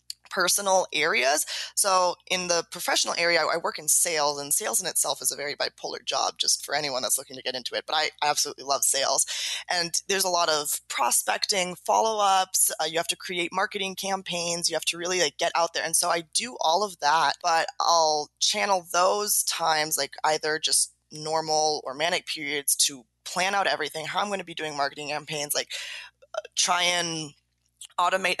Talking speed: 195 wpm